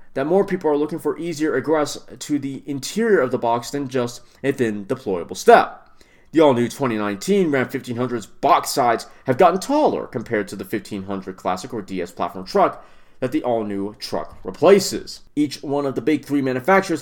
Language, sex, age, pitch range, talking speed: English, male, 30-49, 115-155 Hz, 175 wpm